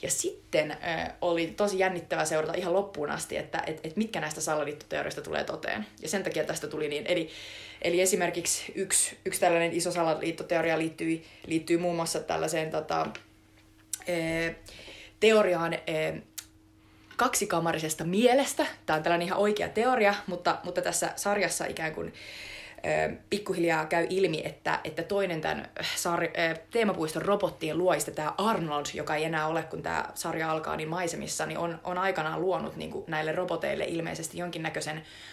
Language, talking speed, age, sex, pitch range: Finnish, 140 wpm, 20-39, female, 160-190 Hz